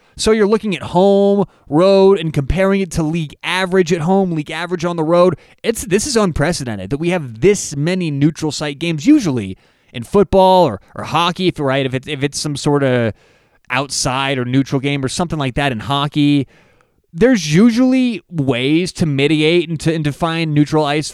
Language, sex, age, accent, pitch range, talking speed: English, male, 20-39, American, 130-170 Hz, 190 wpm